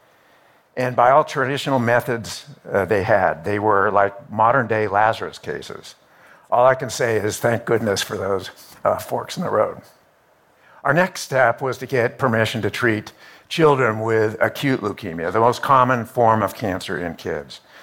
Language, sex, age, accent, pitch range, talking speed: English, male, 60-79, American, 110-130 Hz, 165 wpm